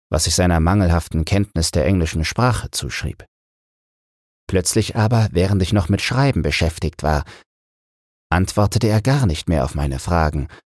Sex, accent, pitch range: male, German, 80-110 Hz